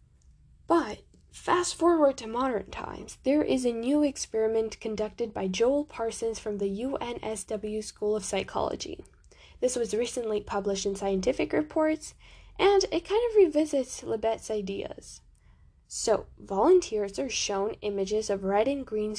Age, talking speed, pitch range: 10-29, 140 wpm, 210-295 Hz